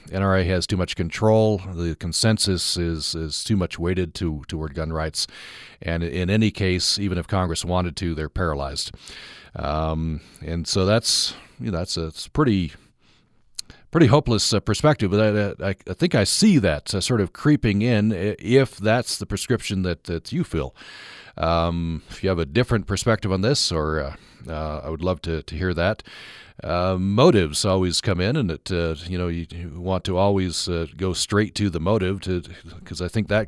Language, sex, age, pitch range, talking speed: English, male, 40-59, 80-105 Hz, 190 wpm